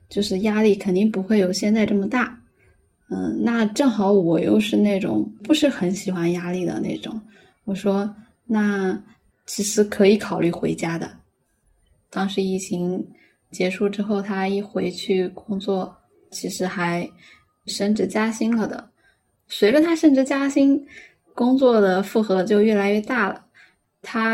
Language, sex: Chinese, female